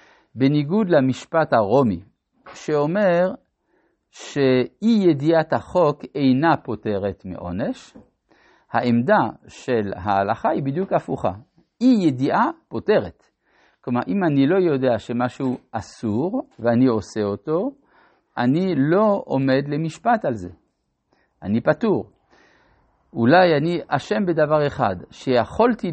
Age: 50-69